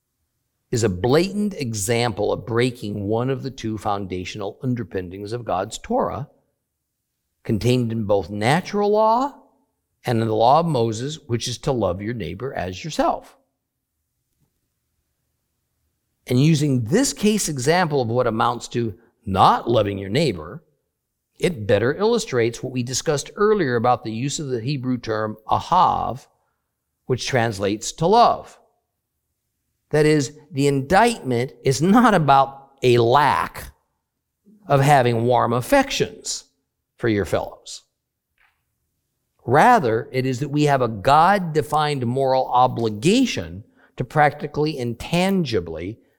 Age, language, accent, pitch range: 50-69, English, American, 115-150 Hz